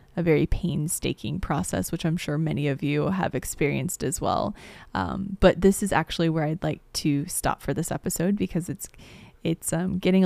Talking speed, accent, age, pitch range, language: 185 wpm, American, 20-39, 155-175 Hz, English